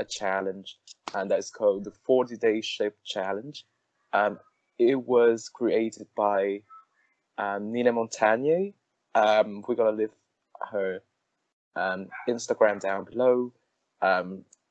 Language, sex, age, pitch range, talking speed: Vietnamese, male, 20-39, 105-120 Hz, 115 wpm